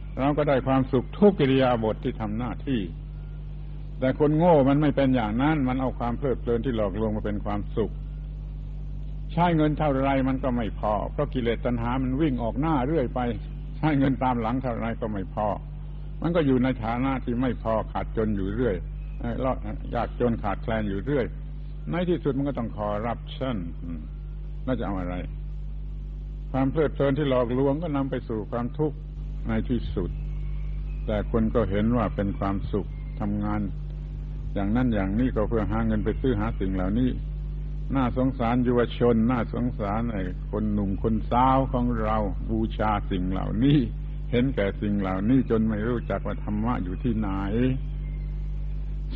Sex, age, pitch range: male, 70-89, 110-145 Hz